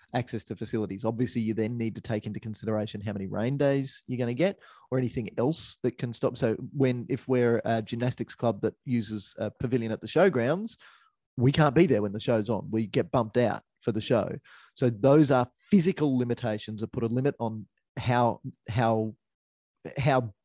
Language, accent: English, Australian